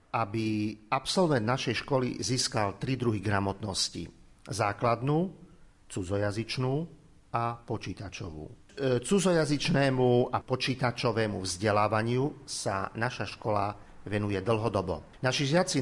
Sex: male